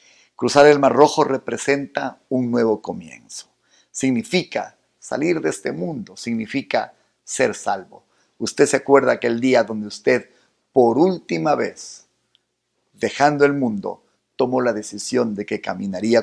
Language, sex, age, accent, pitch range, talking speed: Spanish, male, 50-69, Mexican, 110-145 Hz, 135 wpm